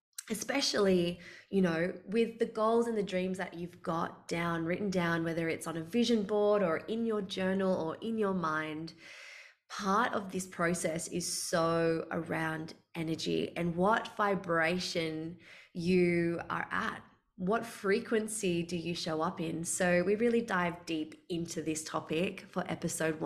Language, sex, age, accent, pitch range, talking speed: English, female, 20-39, Australian, 170-210 Hz, 155 wpm